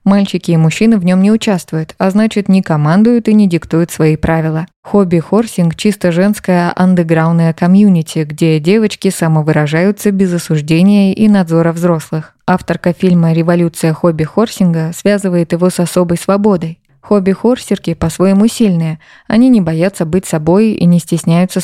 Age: 20-39